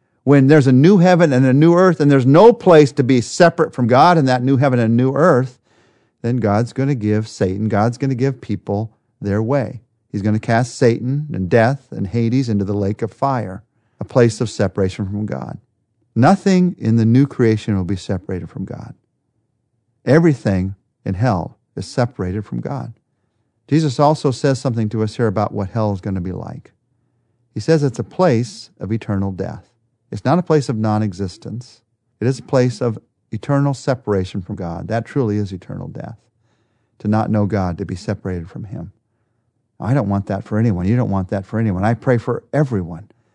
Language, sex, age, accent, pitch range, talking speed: English, male, 50-69, American, 105-135 Hz, 190 wpm